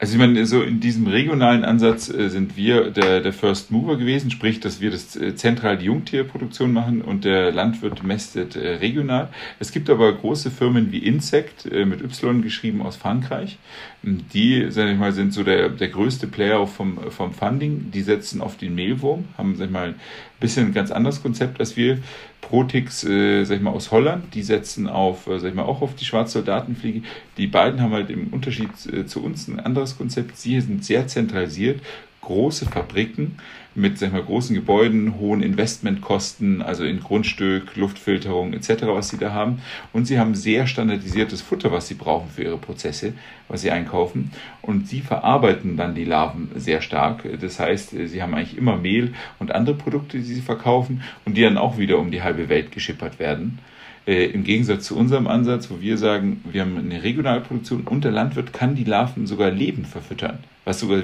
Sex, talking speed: male, 190 wpm